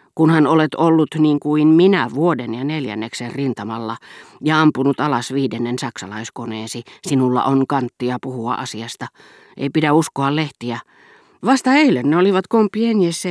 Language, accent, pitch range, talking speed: Finnish, native, 125-170 Hz, 130 wpm